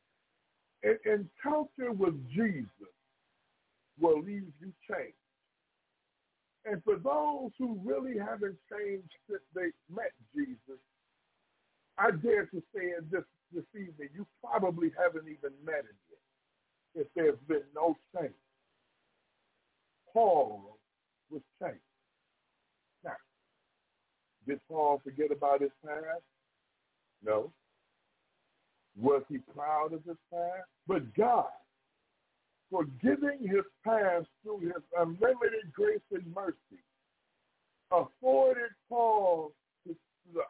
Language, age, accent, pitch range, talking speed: English, 60-79, American, 160-235 Hz, 100 wpm